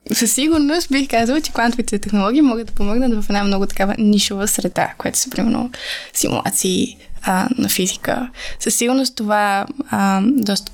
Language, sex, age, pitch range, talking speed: Bulgarian, female, 10-29, 200-255 Hz, 150 wpm